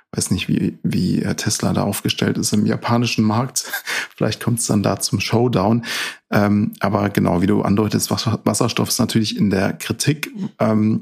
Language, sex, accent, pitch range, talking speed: German, male, German, 95-120 Hz, 175 wpm